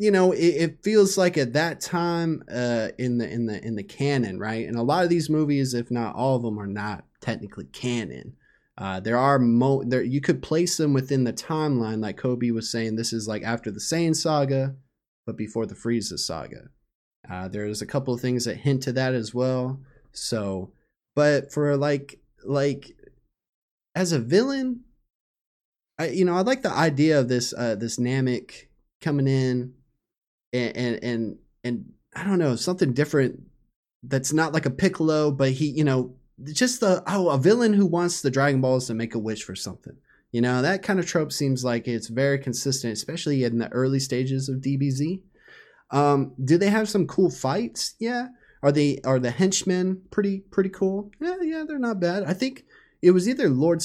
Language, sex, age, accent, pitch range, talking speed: English, male, 20-39, American, 120-170 Hz, 195 wpm